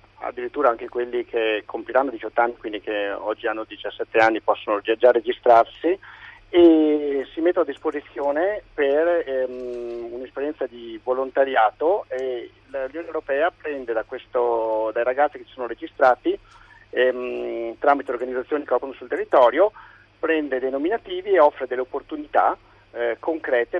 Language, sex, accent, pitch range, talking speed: Italian, male, native, 115-145 Hz, 135 wpm